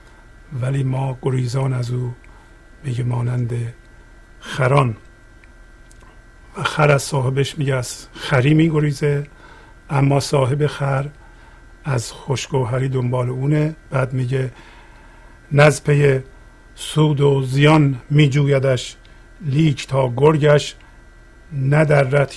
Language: Persian